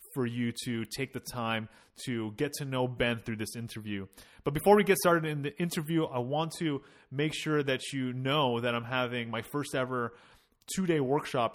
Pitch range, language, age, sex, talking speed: 120-150 Hz, English, 30-49, male, 200 wpm